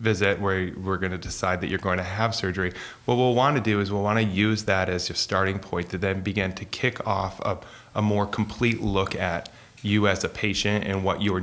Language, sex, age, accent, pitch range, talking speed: English, male, 30-49, American, 90-105 Hz, 240 wpm